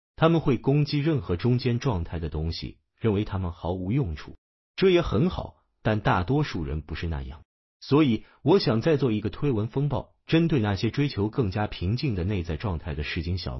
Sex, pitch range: male, 85-130 Hz